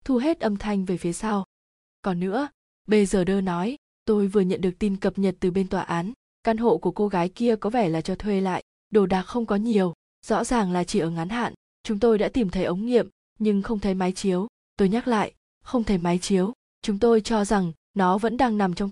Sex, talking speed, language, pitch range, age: female, 240 wpm, Vietnamese, 185-225 Hz, 20-39